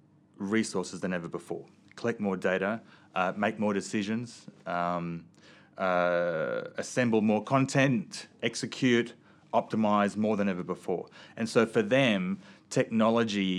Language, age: English, 30-49